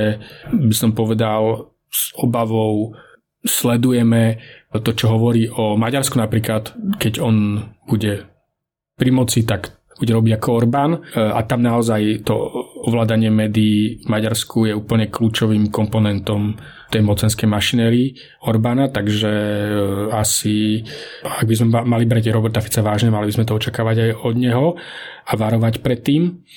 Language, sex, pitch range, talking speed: Slovak, male, 110-125 Hz, 130 wpm